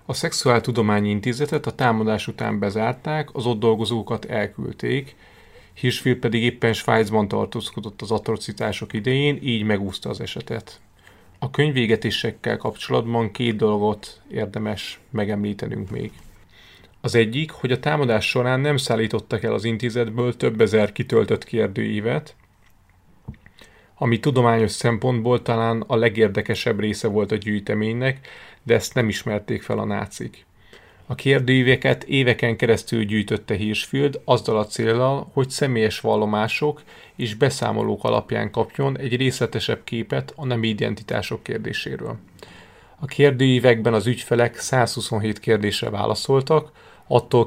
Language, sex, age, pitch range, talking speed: Hungarian, male, 30-49, 105-125 Hz, 120 wpm